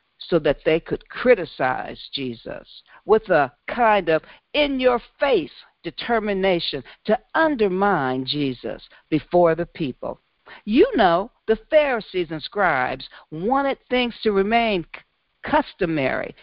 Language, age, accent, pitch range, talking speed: English, 60-79, American, 165-255 Hz, 105 wpm